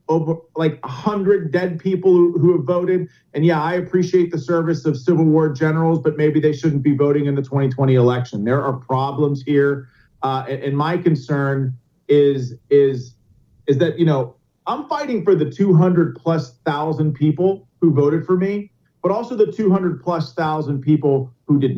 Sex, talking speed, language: male, 185 wpm, English